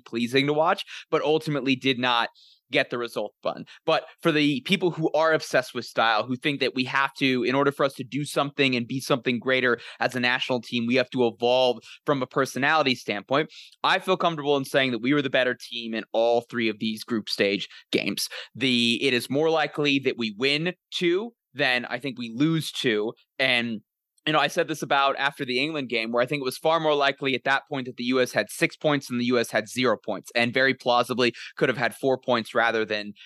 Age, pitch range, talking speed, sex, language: 20-39, 120-145 Hz, 230 wpm, male, English